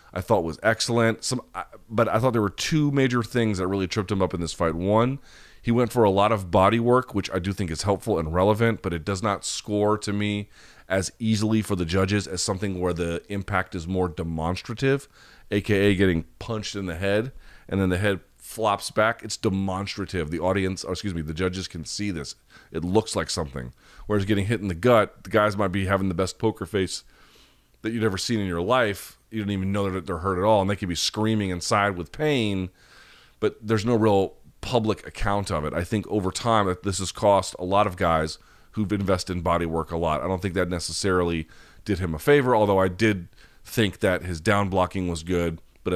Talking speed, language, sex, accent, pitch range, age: 225 wpm, English, male, American, 85-105 Hz, 30-49